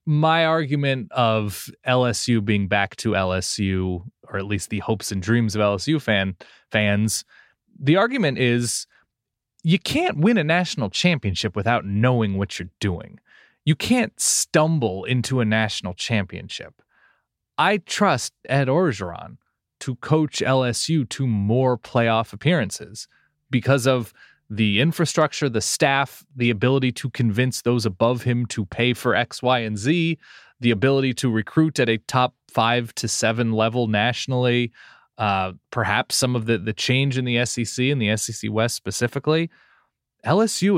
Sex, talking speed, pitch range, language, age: male, 145 wpm, 110-145 Hz, English, 20-39